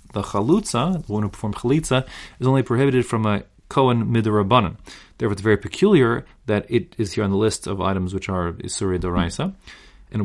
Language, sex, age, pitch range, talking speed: English, male, 30-49, 100-130 Hz, 185 wpm